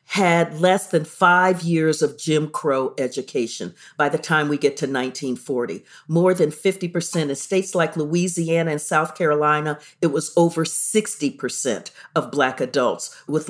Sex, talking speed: female, 145 wpm